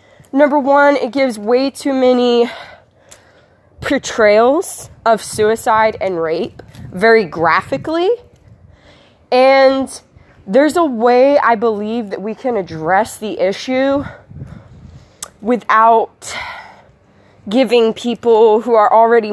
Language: English